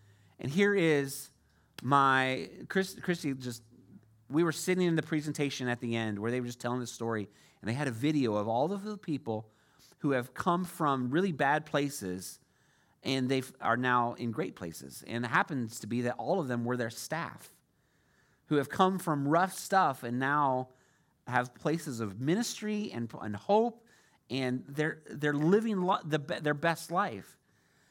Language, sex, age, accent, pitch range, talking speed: English, male, 30-49, American, 120-175 Hz, 175 wpm